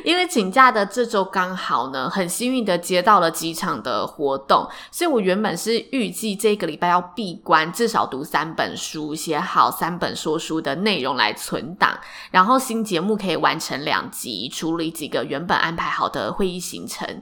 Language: Chinese